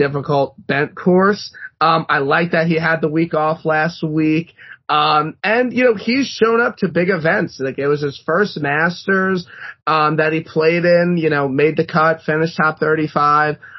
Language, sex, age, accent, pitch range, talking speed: English, male, 30-49, American, 140-180 Hz, 185 wpm